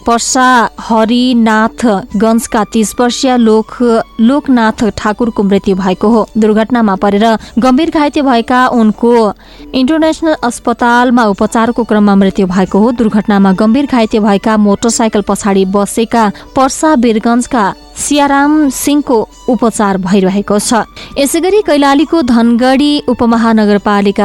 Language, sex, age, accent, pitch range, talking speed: English, female, 20-39, Indian, 205-250 Hz, 120 wpm